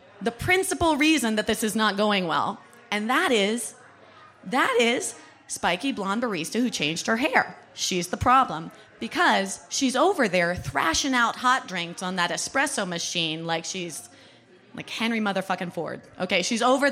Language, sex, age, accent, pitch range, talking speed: English, female, 30-49, American, 180-245 Hz, 160 wpm